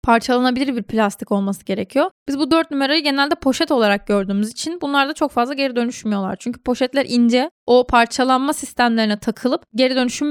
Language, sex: Turkish, female